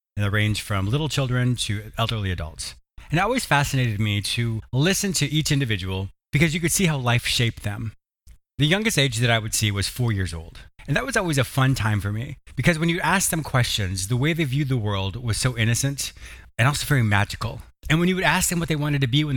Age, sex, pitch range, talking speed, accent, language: 30-49, male, 110-150 Hz, 240 wpm, American, English